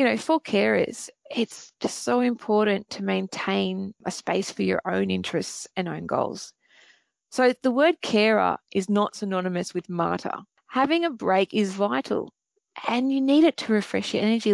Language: English